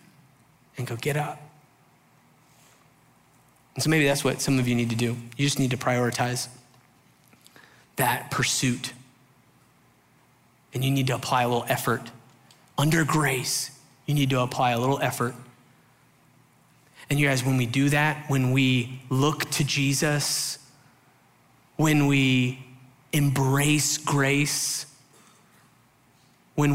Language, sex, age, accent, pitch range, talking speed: English, male, 30-49, American, 130-150 Hz, 125 wpm